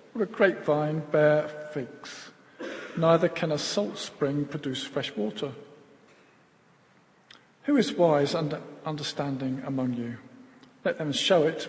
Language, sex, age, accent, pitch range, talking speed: English, male, 50-69, British, 145-190 Hz, 125 wpm